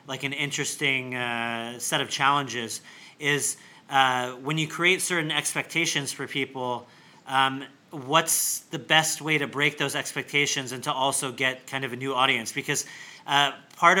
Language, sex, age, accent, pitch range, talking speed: English, male, 30-49, American, 130-150 Hz, 160 wpm